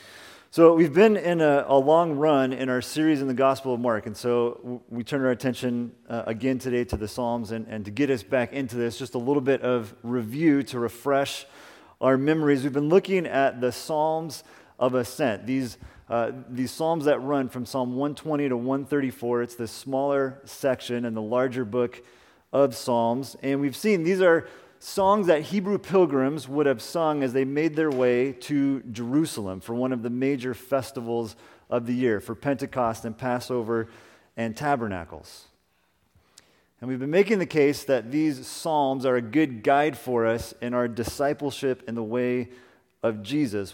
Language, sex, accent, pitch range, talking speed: English, male, American, 115-140 Hz, 180 wpm